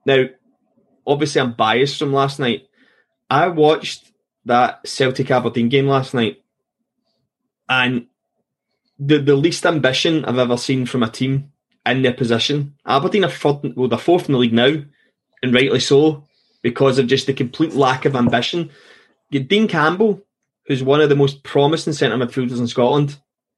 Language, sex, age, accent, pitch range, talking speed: English, male, 20-39, British, 120-145 Hz, 155 wpm